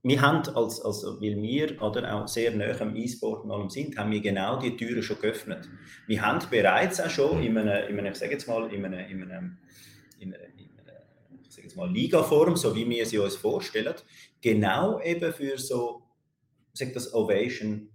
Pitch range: 105-140 Hz